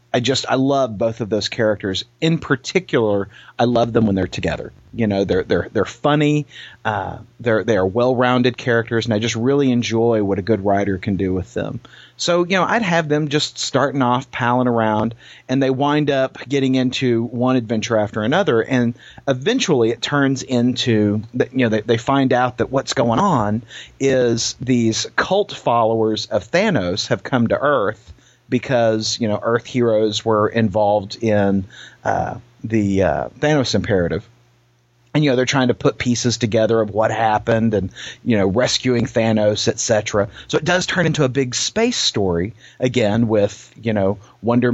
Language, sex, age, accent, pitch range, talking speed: English, male, 40-59, American, 110-130 Hz, 180 wpm